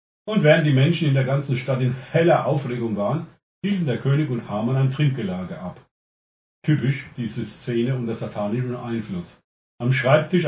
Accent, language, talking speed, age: German, German, 160 wpm, 40-59